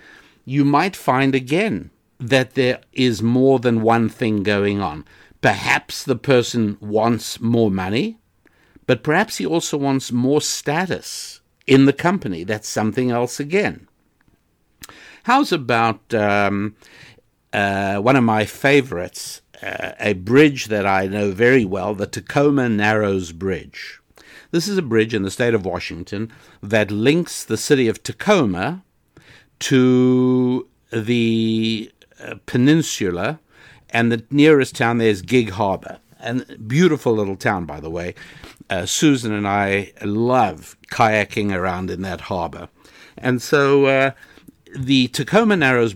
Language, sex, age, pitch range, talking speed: English, male, 60-79, 105-130 Hz, 135 wpm